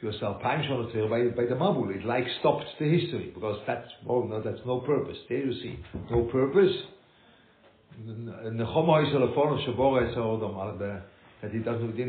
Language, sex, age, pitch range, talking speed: English, male, 60-79, 110-145 Hz, 150 wpm